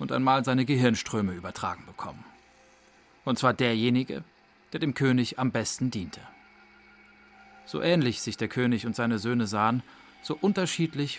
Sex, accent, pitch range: male, German, 105-135 Hz